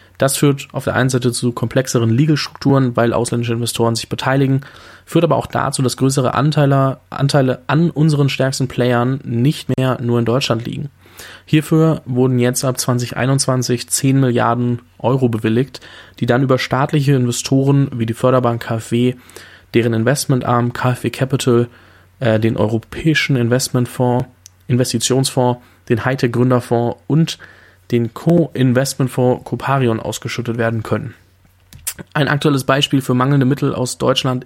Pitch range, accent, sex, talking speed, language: 115-135 Hz, German, male, 130 wpm, German